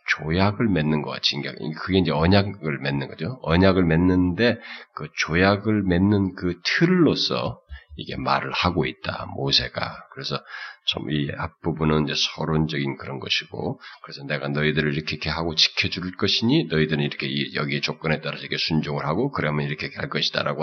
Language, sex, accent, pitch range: Korean, male, native, 75-105 Hz